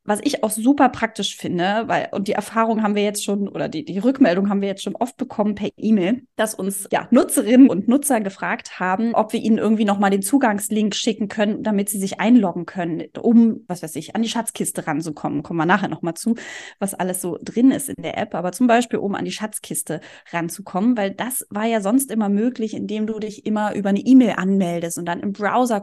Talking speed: 225 wpm